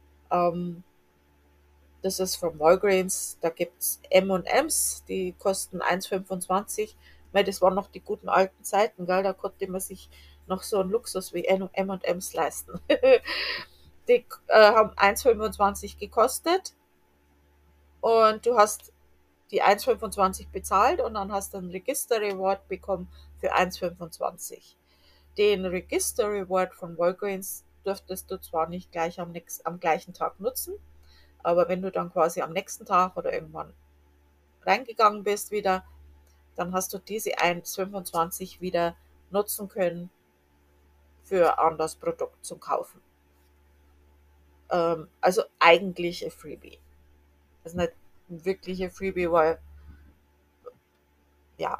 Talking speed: 115 wpm